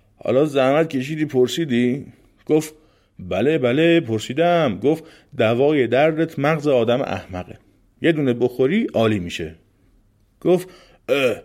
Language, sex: Persian, male